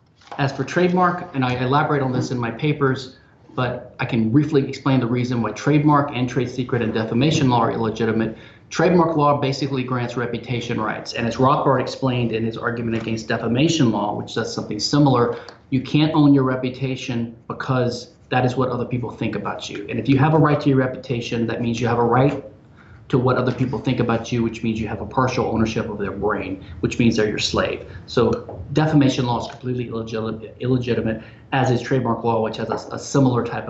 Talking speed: 205 wpm